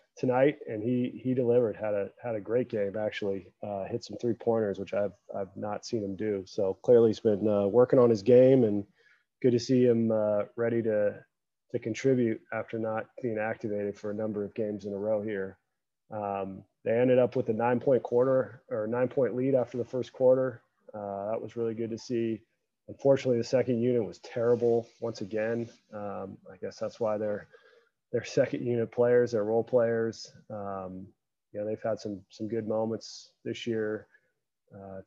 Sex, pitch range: male, 105-120 Hz